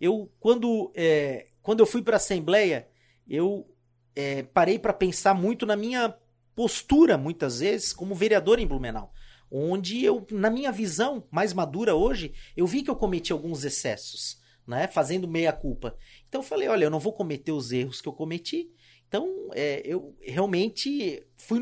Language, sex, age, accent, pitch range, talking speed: Portuguese, male, 40-59, Brazilian, 160-235 Hz, 160 wpm